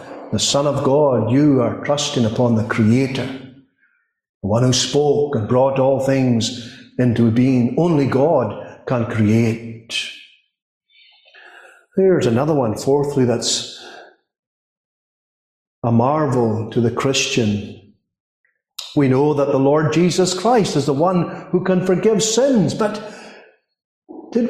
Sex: male